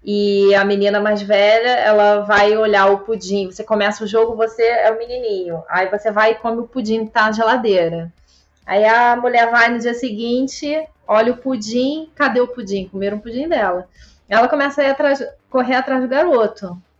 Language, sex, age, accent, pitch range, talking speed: Portuguese, female, 20-39, Brazilian, 205-250 Hz, 185 wpm